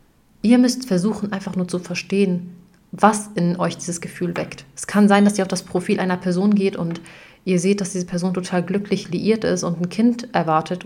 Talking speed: 210 wpm